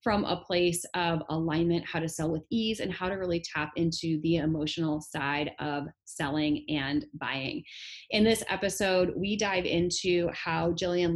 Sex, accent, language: female, American, English